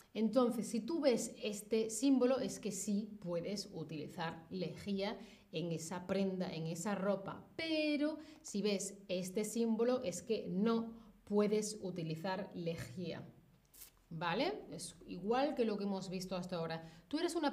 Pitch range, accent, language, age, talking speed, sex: 185-240 Hz, Spanish, Spanish, 30-49, 145 wpm, female